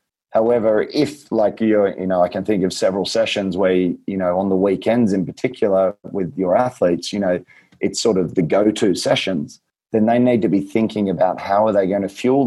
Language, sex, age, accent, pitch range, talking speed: English, male, 30-49, Australian, 90-105 Hz, 210 wpm